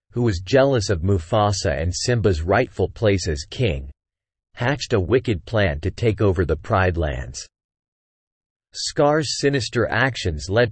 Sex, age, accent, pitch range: male, 50-69, American, 90-125 Hz